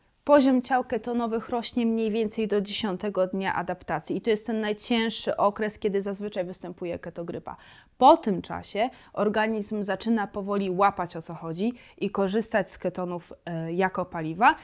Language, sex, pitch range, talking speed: Polish, female, 190-235 Hz, 150 wpm